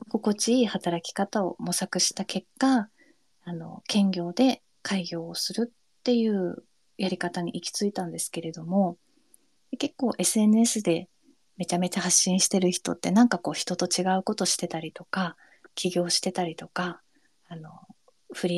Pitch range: 175-220 Hz